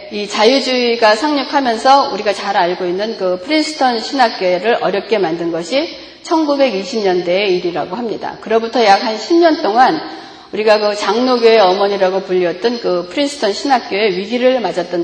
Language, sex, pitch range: Korean, female, 205-285 Hz